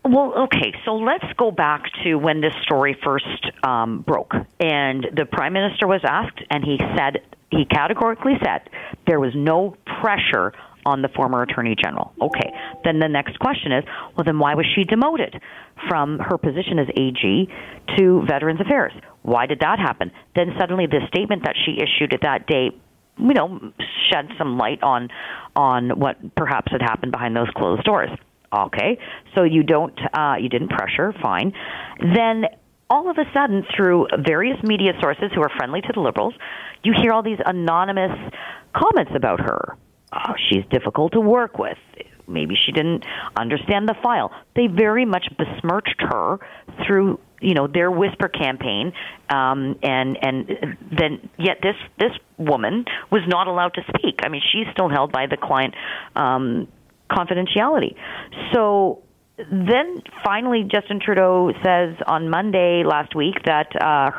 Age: 40-59